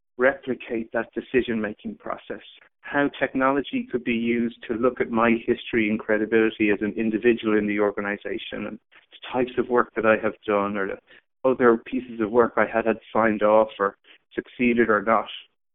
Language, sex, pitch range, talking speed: English, male, 110-125 Hz, 175 wpm